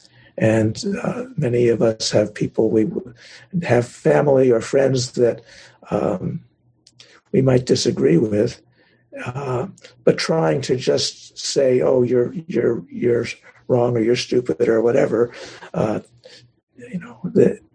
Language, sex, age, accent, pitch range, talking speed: English, male, 60-79, American, 115-165 Hz, 130 wpm